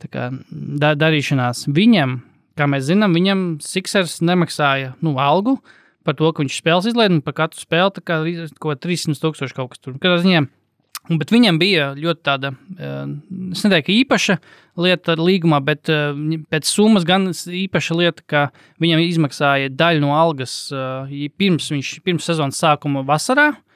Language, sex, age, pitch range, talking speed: English, male, 20-39, 145-185 Hz, 150 wpm